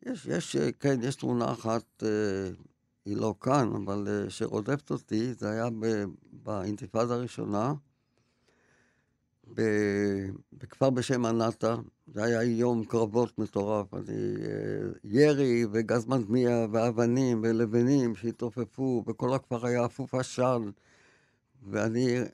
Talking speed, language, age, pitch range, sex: 100 wpm, Hebrew, 60-79, 110-130 Hz, male